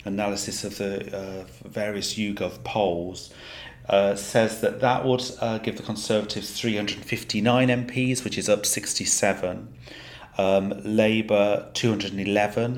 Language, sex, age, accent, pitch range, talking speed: English, male, 40-59, British, 95-110 Hz, 115 wpm